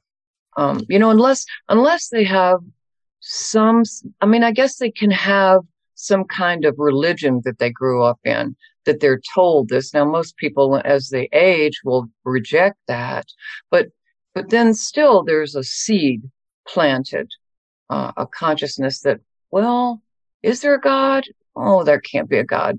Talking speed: 160 wpm